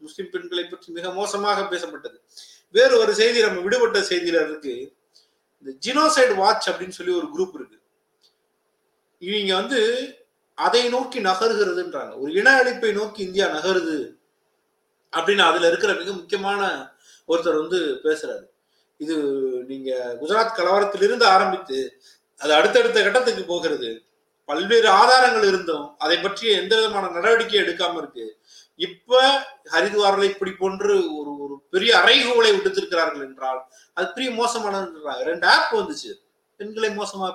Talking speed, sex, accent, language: 100 wpm, male, native, Tamil